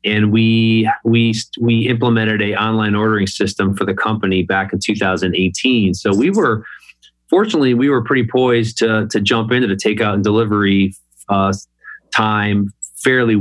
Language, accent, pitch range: English, American, 100-115 Hz